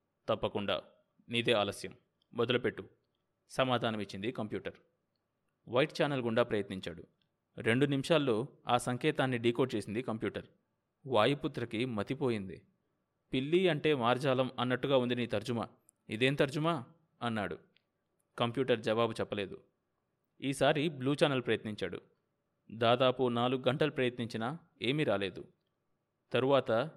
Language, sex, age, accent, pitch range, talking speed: Telugu, male, 20-39, native, 115-145 Hz, 95 wpm